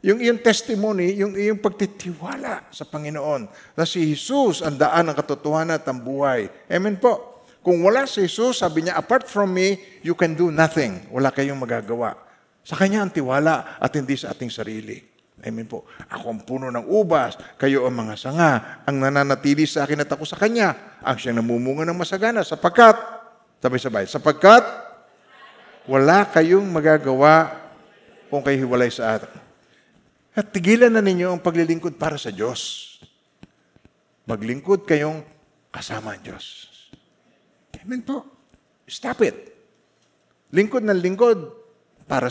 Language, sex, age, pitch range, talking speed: Filipino, male, 50-69, 135-200 Hz, 145 wpm